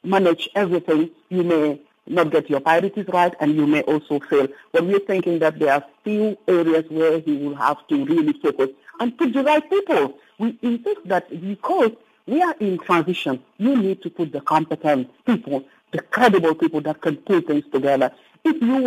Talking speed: 190 wpm